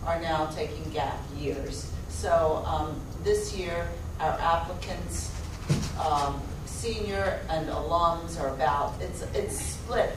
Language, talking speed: English, 120 wpm